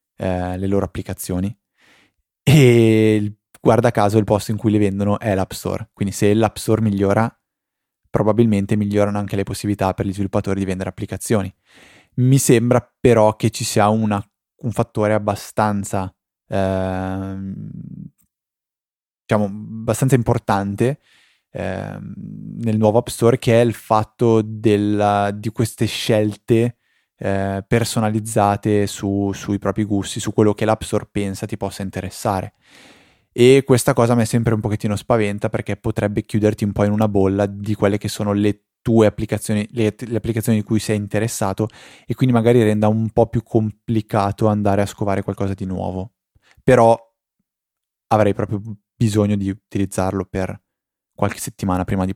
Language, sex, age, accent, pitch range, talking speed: Italian, male, 20-39, native, 100-115 Hz, 145 wpm